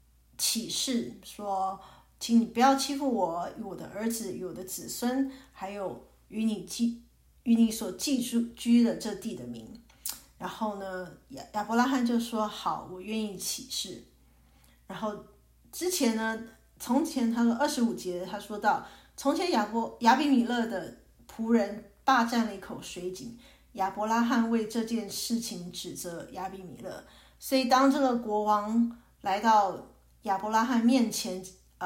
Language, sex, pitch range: English, female, 195-245 Hz